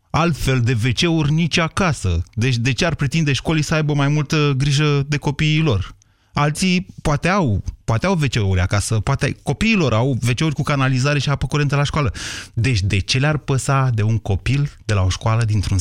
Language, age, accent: Romanian, 30-49, native